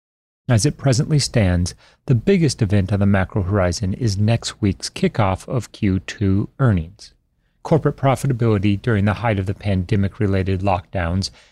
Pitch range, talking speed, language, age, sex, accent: 95-130 Hz, 140 wpm, English, 40-59, male, American